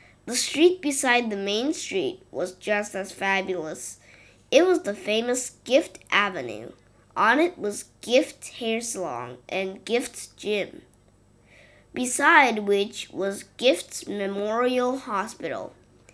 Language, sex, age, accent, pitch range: Chinese, female, 20-39, American, 195-255 Hz